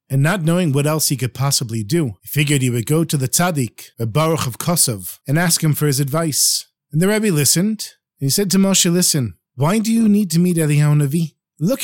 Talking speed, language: 235 wpm, English